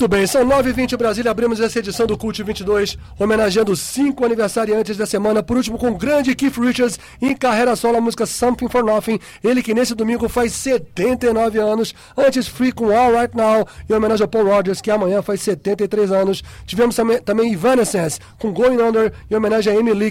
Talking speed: 200 wpm